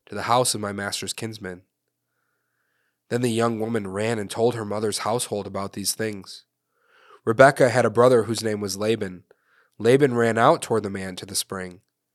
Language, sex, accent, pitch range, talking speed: English, male, American, 105-135 Hz, 185 wpm